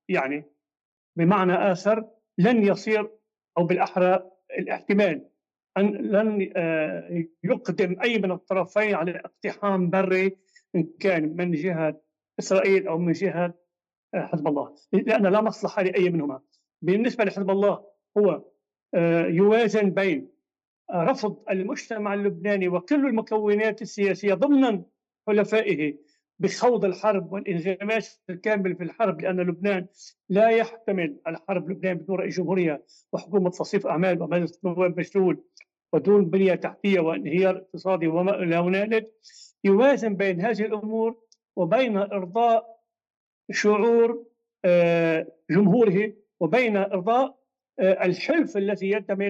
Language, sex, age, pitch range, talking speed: Arabic, male, 50-69, 175-210 Hz, 105 wpm